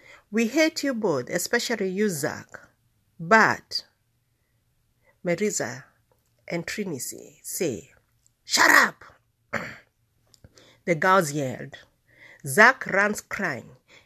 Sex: female